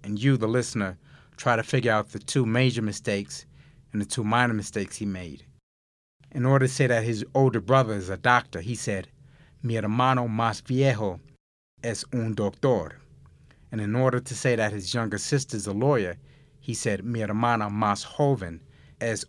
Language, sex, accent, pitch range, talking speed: English, male, American, 105-130 Hz, 180 wpm